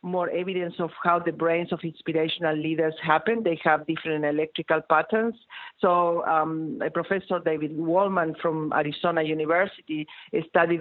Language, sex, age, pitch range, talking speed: English, female, 50-69, 155-175 Hz, 135 wpm